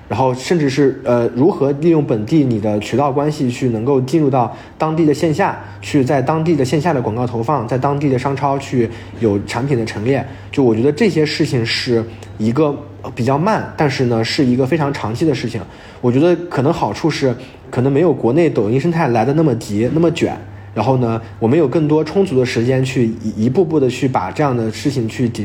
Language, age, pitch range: Chinese, 20-39, 110-145 Hz